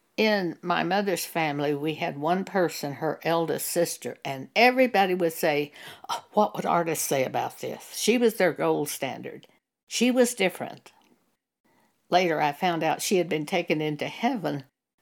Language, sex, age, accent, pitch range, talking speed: English, female, 60-79, American, 155-210 Hz, 155 wpm